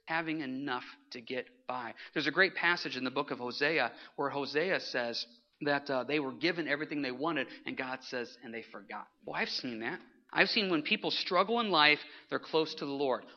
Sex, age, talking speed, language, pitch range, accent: male, 40-59, 210 wpm, English, 125-200 Hz, American